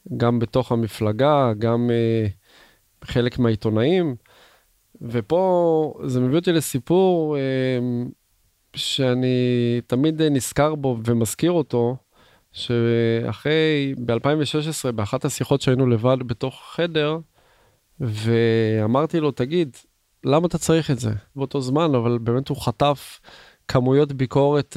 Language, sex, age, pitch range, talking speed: Hebrew, male, 20-39, 115-145 Hz, 105 wpm